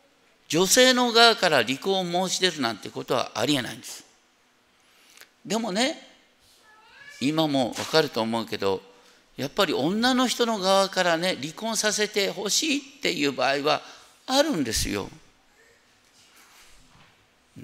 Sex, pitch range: male, 160-240 Hz